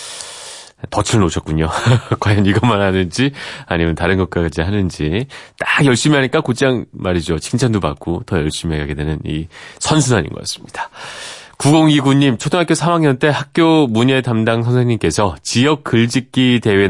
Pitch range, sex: 90-140 Hz, male